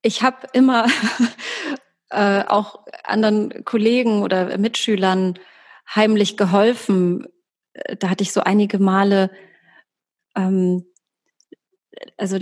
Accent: German